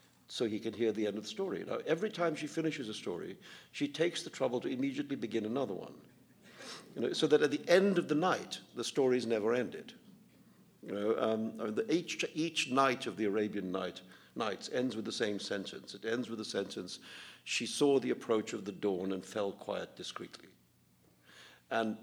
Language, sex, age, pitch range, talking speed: English, male, 50-69, 110-150 Hz, 195 wpm